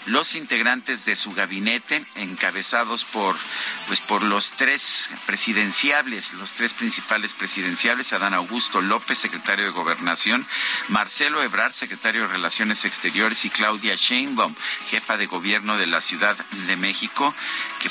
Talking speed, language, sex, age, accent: 135 wpm, Spanish, male, 50-69, Mexican